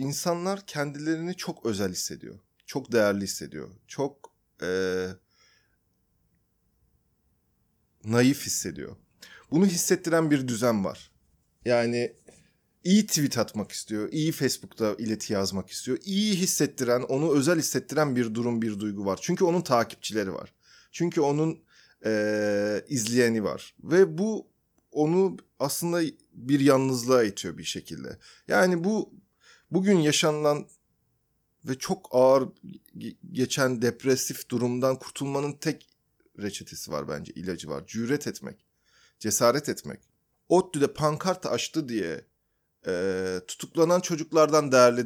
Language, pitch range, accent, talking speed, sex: Turkish, 110-170 Hz, native, 110 wpm, male